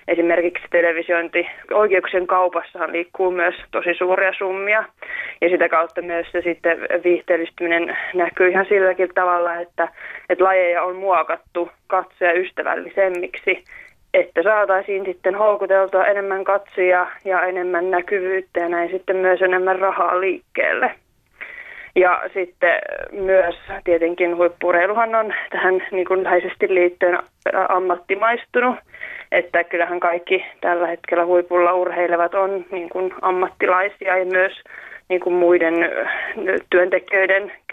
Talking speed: 105 wpm